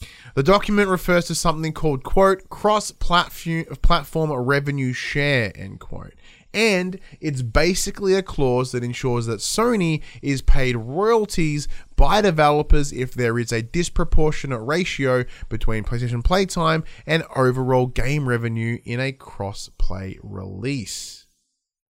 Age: 20-39